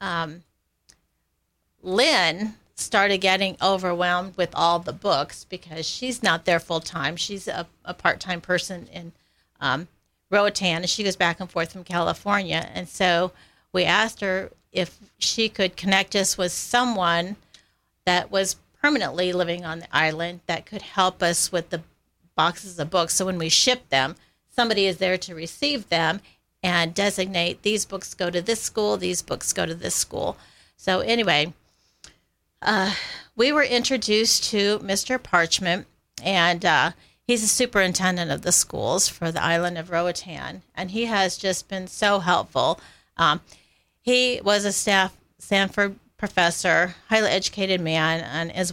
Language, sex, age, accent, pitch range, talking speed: English, female, 40-59, American, 170-200 Hz, 155 wpm